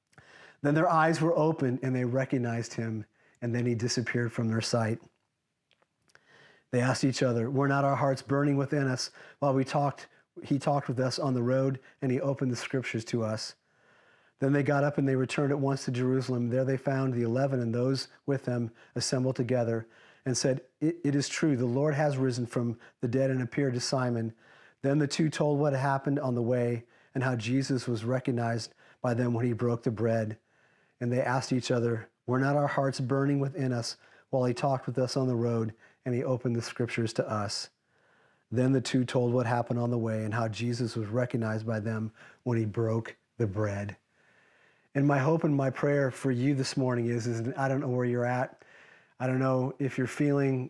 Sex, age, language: male, 40-59, English